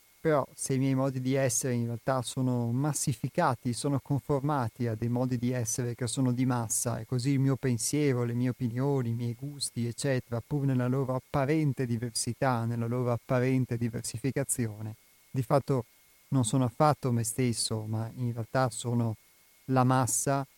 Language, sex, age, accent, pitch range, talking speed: Italian, male, 30-49, native, 120-135 Hz, 165 wpm